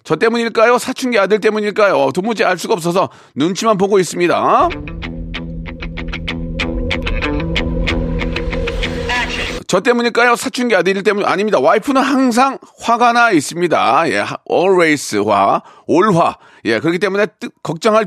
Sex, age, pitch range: male, 40-59, 140-225 Hz